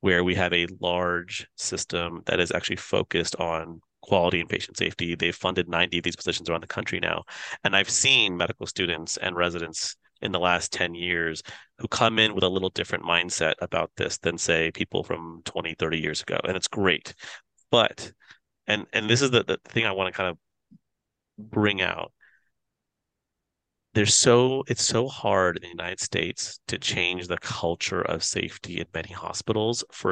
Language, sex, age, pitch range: English, male, 30-49, 85-105 Hz